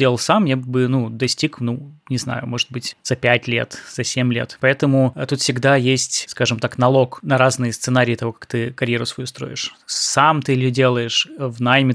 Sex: male